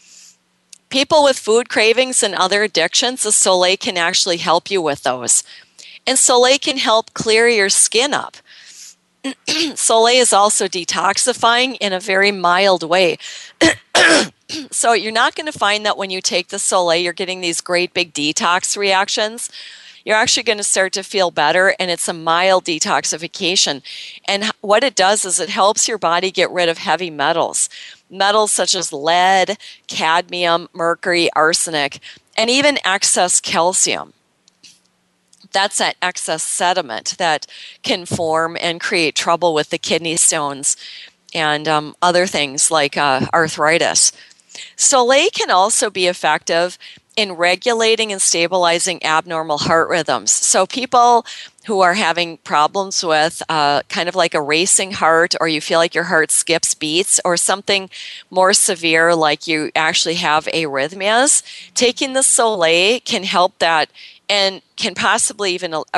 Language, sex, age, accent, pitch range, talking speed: English, female, 40-59, American, 165-215 Hz, 150 wpm